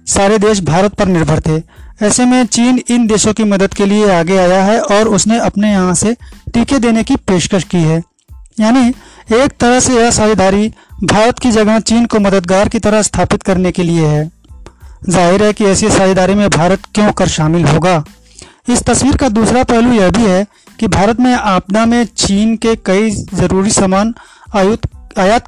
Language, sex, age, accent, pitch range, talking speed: Hindi, male, 30-49, native, 185-225 Hz, 185 wpm